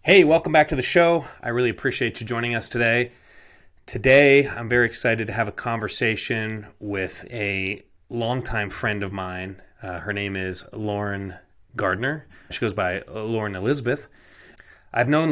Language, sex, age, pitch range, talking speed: English, male, 30-49, 100-125 Hz, 155 wpm